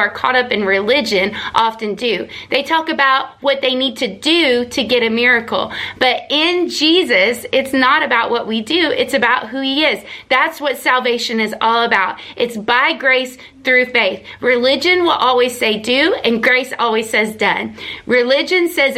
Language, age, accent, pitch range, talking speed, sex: English, 30-49, American, 235-280 Hz, 175 wpm, female